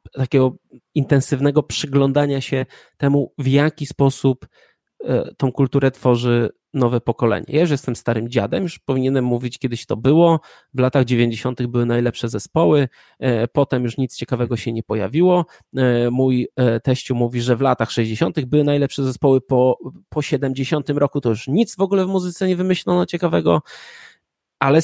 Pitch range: 125-150 Hz